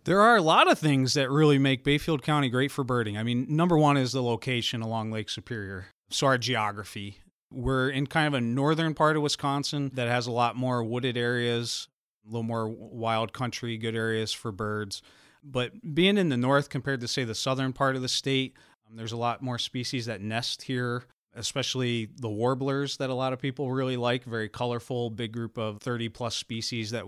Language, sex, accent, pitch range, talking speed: English, male, American, 115-140 Hz, 205 wpm